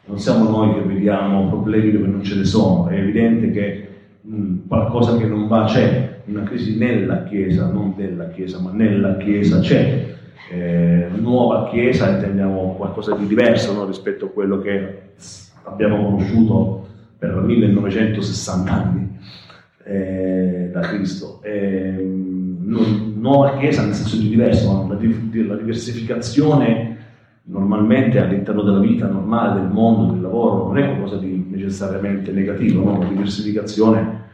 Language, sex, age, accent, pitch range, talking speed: Italian, male, 40-59, native, 95-110 Hz, 140 wpm